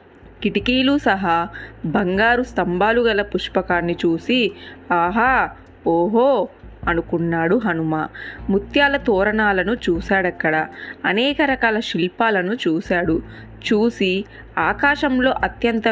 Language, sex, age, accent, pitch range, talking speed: Telugu, female, 20-39, native, 175-225 Hz, 80 wpm